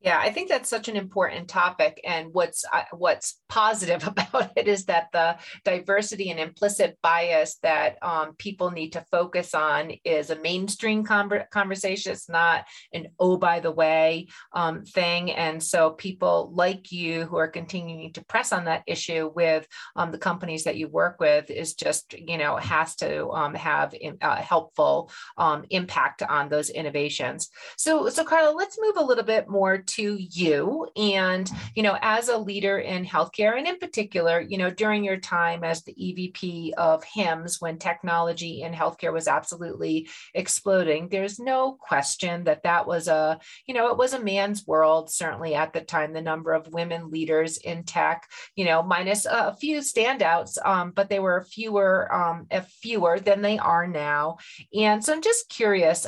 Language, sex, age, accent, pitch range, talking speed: English, female, 40-59, American, 165-210 Hz, 180 wpm